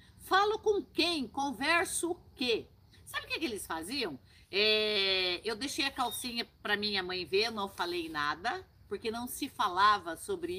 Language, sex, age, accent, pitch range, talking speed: Portuguese, female, 50-69, Brazilian, 200-325 Hz, 165 wpm